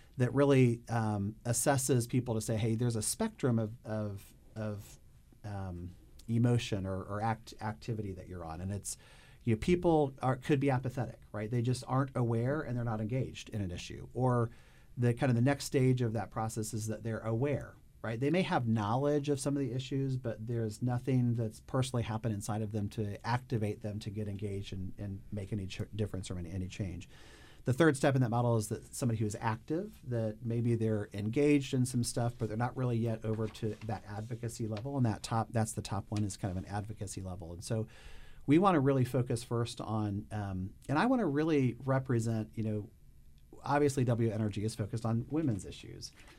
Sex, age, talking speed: male, 40-59, 205 wpm